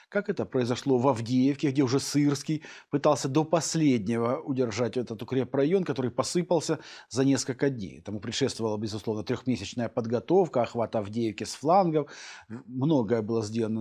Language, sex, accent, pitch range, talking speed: Russian, male, native, 115-155 Hz, 135 wpm